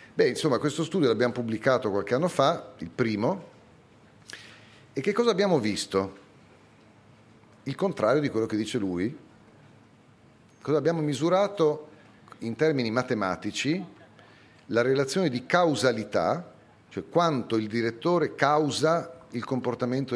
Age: 40-59